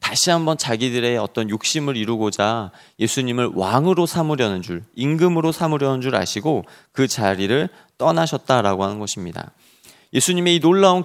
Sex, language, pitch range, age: male, Korean, 110-155 Hz, 30-49